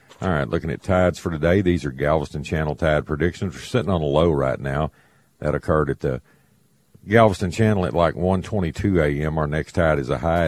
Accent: American